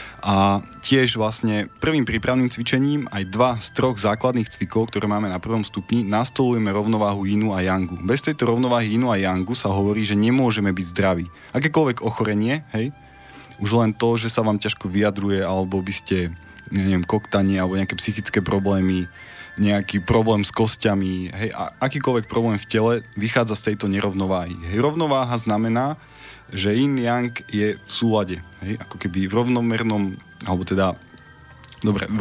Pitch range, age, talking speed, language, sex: 100-120 Hz, 20-39, 160 wpm, Slovak, male